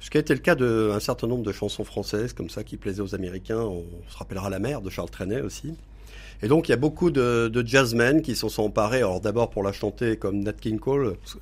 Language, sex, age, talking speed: French, male, 50-69, 260 wpm